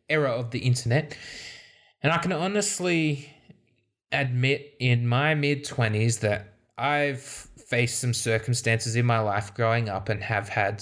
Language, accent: English, Australian